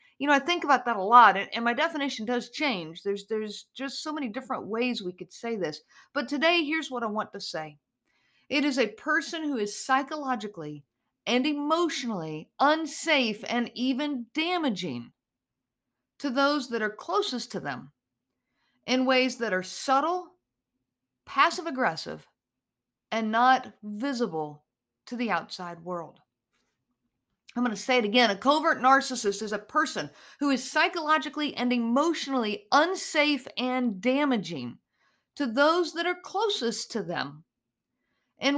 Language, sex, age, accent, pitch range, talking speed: English, female, 50-69, American, 210-295 Hz, 145 wpm